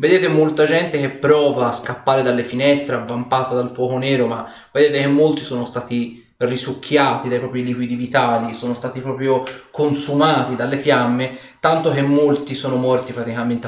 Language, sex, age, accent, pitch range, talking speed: Italian, male, 30-49, native, 120-145 Hz, 160 wpm